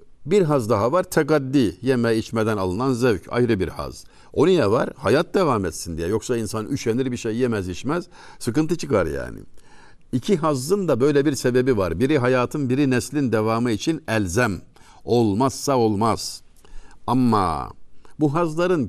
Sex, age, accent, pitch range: male, 60-79, native, 100-130 Hz